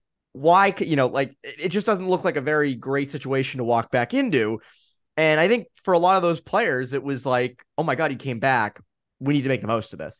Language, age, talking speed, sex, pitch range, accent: English, 20-39, 255 wpm, male, 115-150 Hz, American